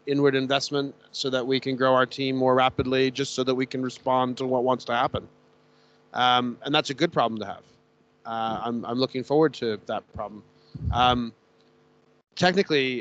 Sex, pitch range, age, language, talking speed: male, 130-145 Hz, 30-49, English, 185 wpm